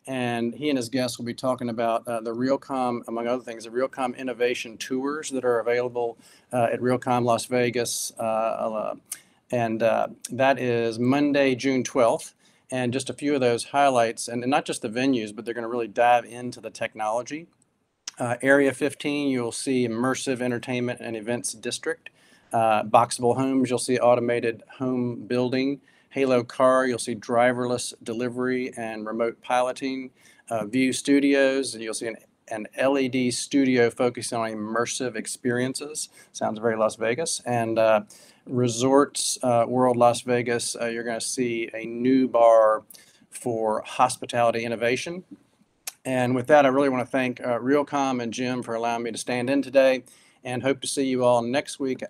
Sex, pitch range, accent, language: male, 115-130 Hz, American, English